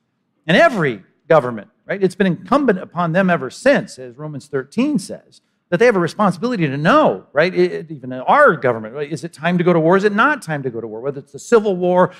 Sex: male